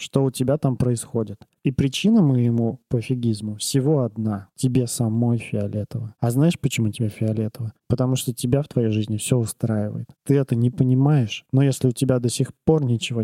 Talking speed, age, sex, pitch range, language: 175 wpm, 20-39, male, 120-140 Hz, Russian